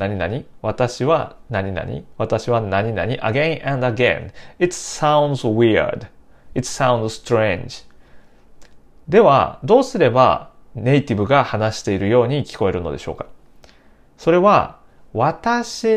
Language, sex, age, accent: Japanese, male, 30-49, native